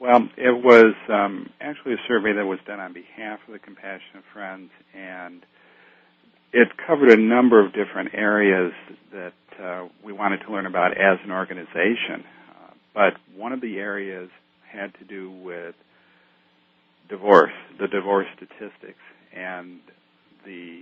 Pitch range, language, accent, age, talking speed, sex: 90-110 Hz, English, American, 50-69, 145 wpm, male